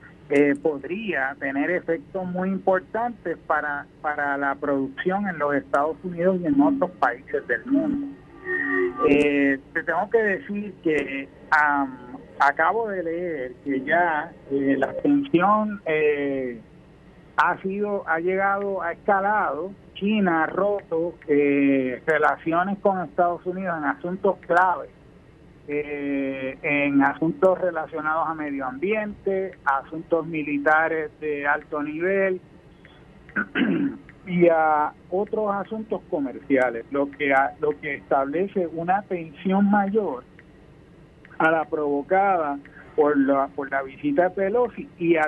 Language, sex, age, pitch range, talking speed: Spanish, male, 50-69, 145-190 Hz, 120 wpm